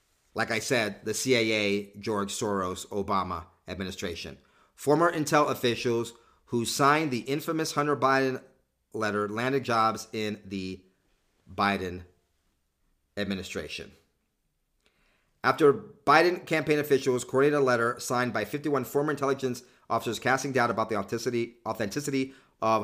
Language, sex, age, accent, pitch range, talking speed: English, male, 40-59, American, 105-125 Hz, 115 wpm